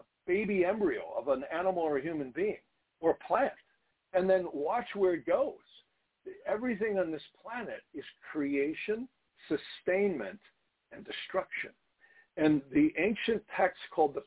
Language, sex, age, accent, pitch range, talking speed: English, male, 60-79, American, 155-245 Hz, 140 wpm